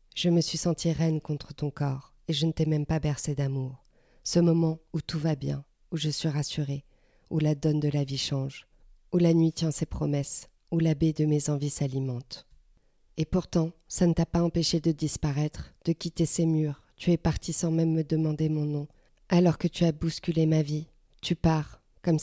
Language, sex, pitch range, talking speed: French, female, 150-165 Hz, 210 wpm